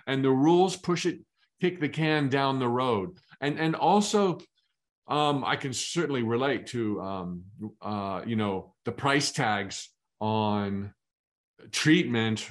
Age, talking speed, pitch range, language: 40-59, 140 wpm, 110-155 Hz, English